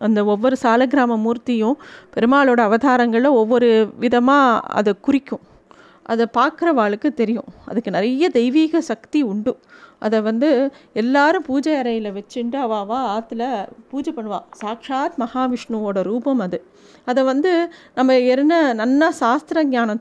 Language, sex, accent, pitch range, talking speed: Tamil, female, native, 230-280 Hz, 120 wpm